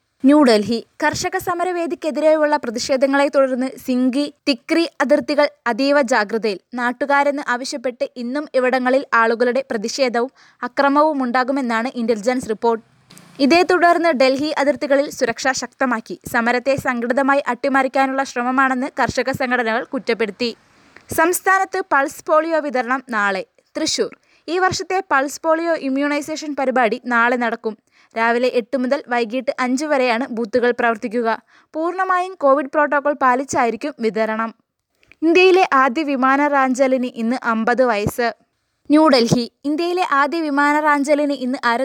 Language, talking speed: Malayalam, 105 wpm